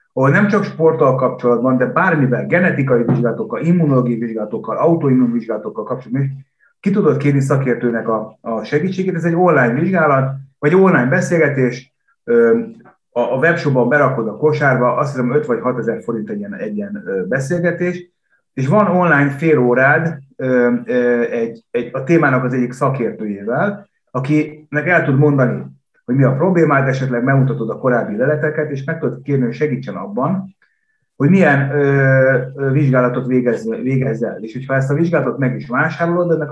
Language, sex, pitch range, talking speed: Hungarian, male, 125-170 Hz, 150 wpm